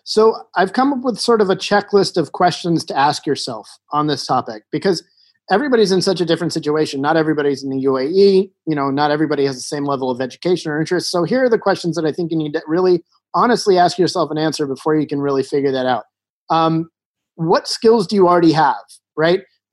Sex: male